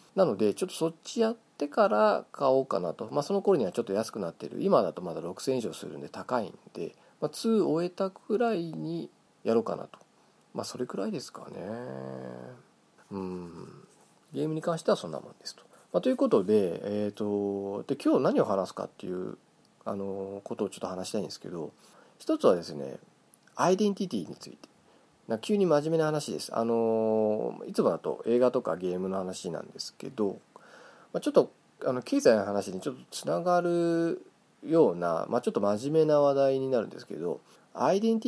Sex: male